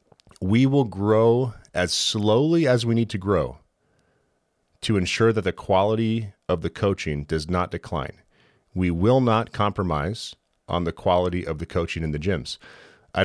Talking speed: 160 wpm